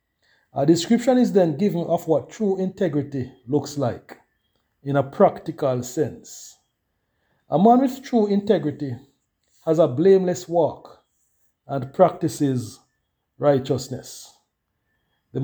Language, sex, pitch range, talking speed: English, male, 140-210 Hz, 110 wpm